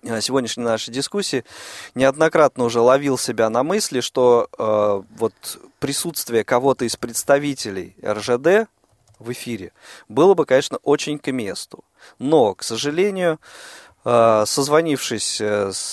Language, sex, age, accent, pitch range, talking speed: Russian, male, 20-39, native, 110-145 Hz, 110 wpm